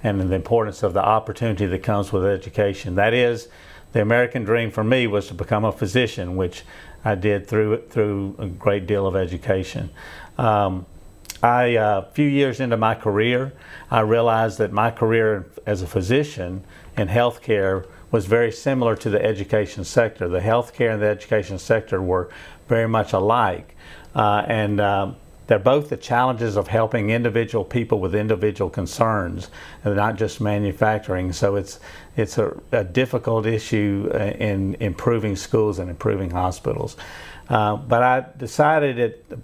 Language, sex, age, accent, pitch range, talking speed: English, male, 50-69, American, 100-115 Hz, 160 wpm